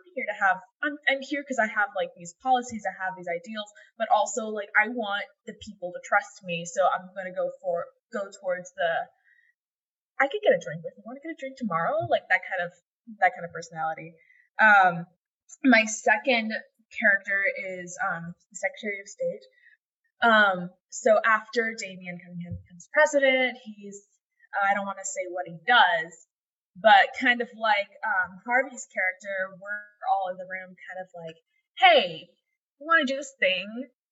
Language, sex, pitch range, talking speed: English, female, 185-265 Hz, 185 wpm